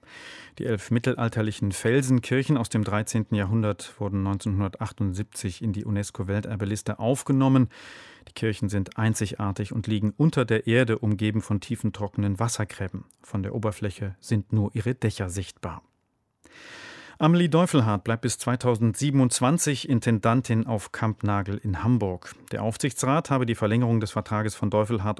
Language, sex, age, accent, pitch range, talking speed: German, male, 40-59, German, 100-120 Hz, 130 wpm